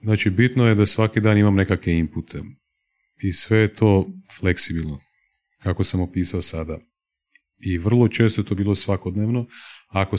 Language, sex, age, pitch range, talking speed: Croatian, male, 30-49, 90-110 Hz, 155 wpm